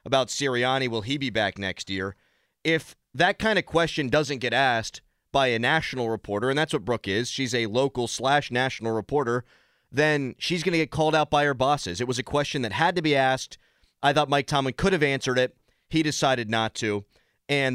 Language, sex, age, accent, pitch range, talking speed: English, male, 30-49, American, 115-145 Hz, 215 wpm